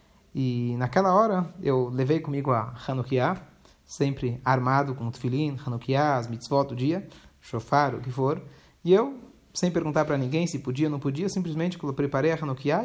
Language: Portuguese